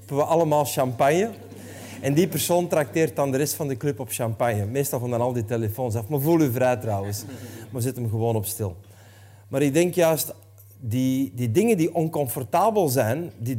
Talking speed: 195 wpm